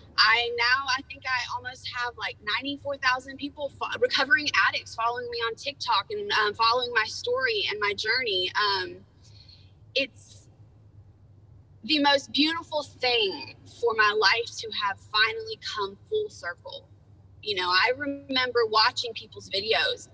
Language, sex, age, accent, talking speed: English, female, 20-39, American, 135 wpm